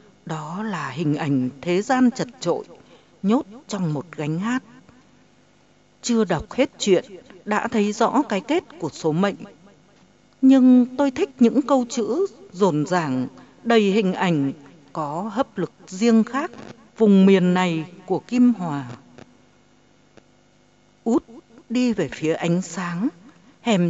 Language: Vietnamese